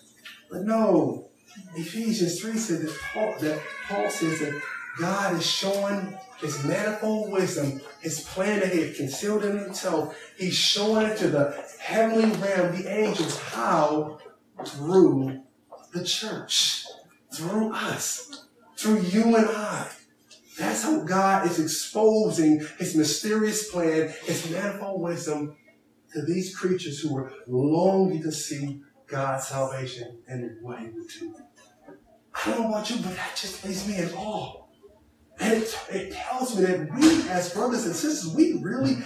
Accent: American